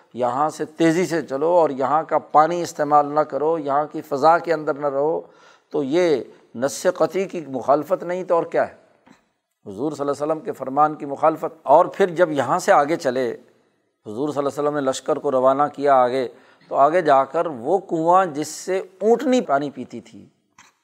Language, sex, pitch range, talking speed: Urdu, male, 135-175 Hz, 200 wpm